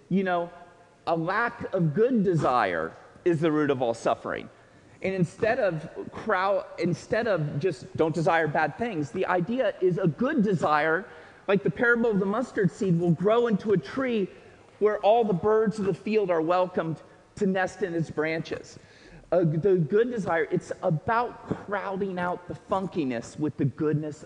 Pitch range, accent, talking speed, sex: 150-205 Hz, American, 170 wpm, male